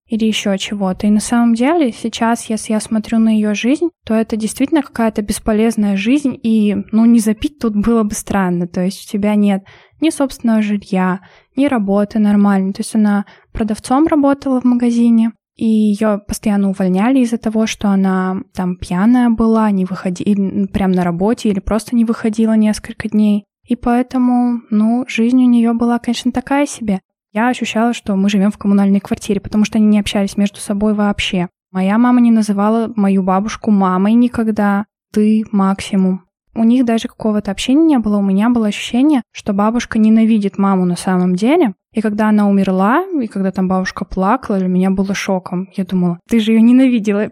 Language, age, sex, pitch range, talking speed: Russian, 10-29, female, 200-235 Hz, 180 wpm